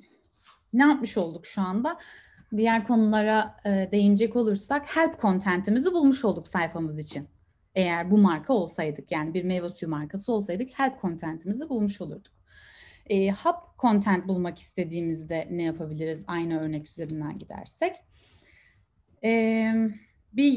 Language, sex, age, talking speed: Turkish, female, 30-49, 125 wpm